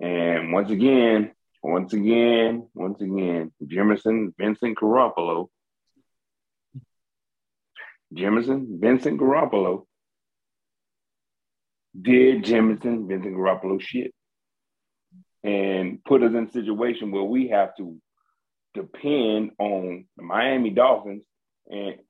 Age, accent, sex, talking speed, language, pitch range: 30-49, American, male, 90 wpm, English, 95-115 Hz